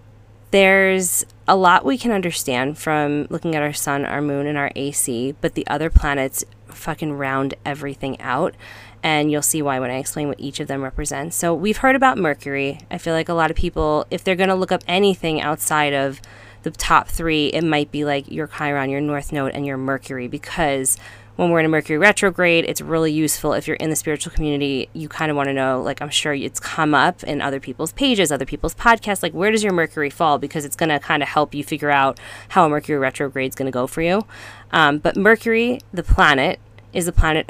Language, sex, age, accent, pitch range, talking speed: English, female, 20-39, American, 135-165 Hz, 225 wpm